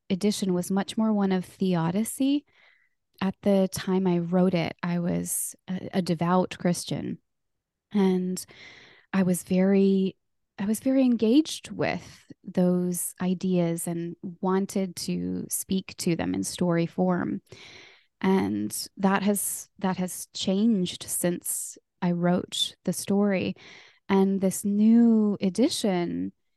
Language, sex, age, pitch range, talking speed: English, female, 20-39, 180-215 Hz, 120 wpm